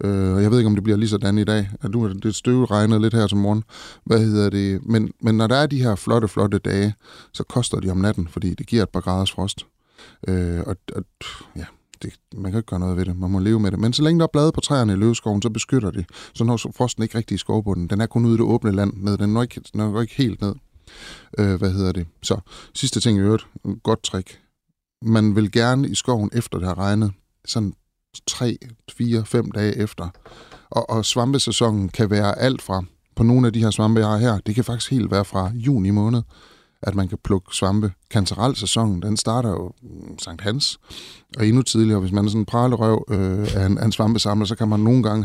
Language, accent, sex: Danish, native, male